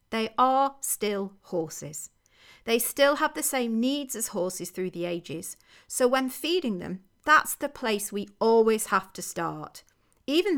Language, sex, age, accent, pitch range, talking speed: English, female, 40-59, British, 190-270 Hz, 160 wpm